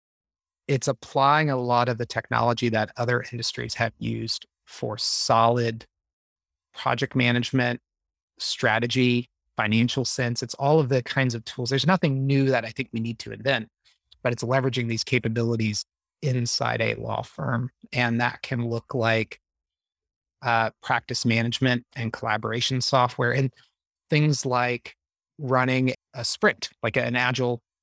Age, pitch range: 30-49, 115-135 Hz